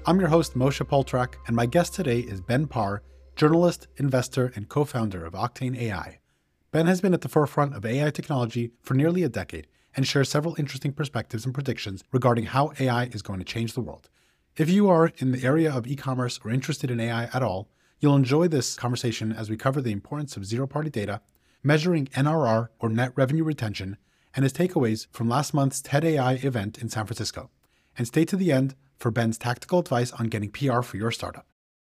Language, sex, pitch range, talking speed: English, male, 115-145 Hz, 210 wpm